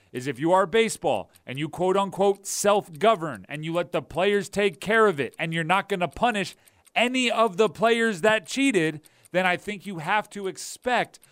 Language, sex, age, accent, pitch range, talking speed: English, male, 40-59, American, 150-195 Hz, 195 wpm